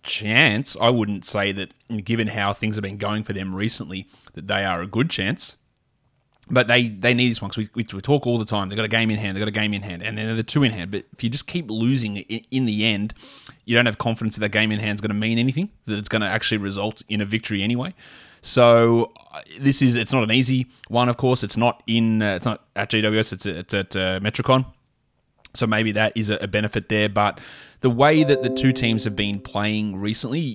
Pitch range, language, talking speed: 105-120 Hz, English, 250 wpm